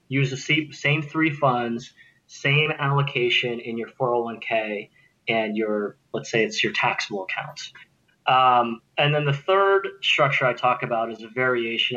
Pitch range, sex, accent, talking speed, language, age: 120-145 Hz, male, American, 150 wpm, English, 20-39